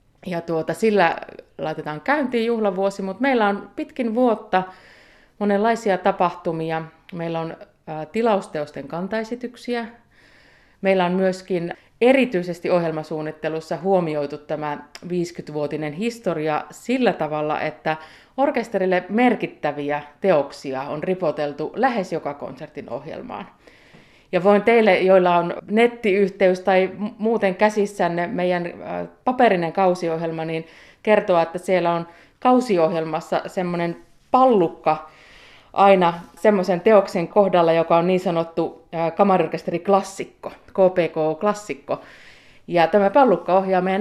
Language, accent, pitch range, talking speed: Finnish, native, 160-205 Hz, 100 wpm